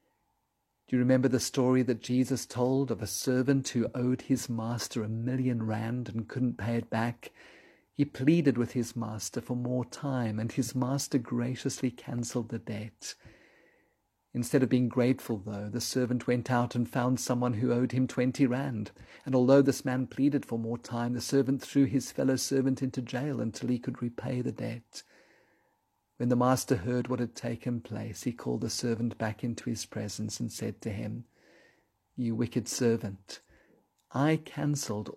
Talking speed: 175 wpm